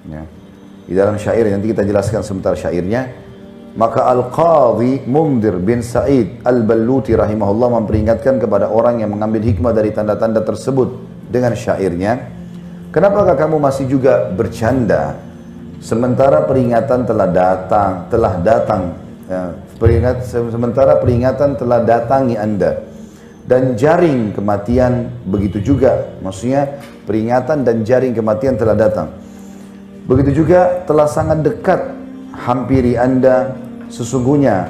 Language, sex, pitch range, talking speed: Indonesian, male, 110-145 Hz, 110 wpm